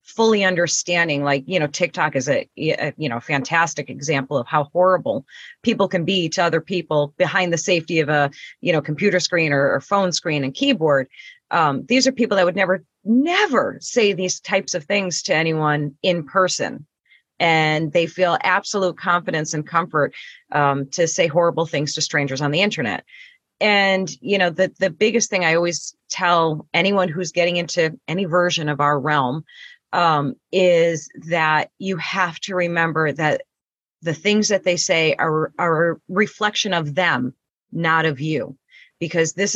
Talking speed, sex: 175 wpm, female